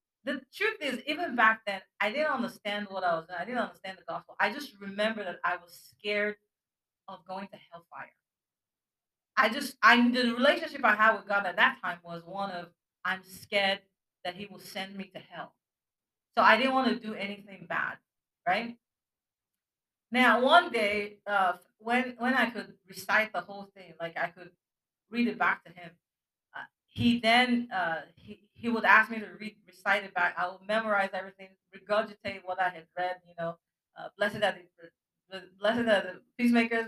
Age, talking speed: 40-59, 190 wpm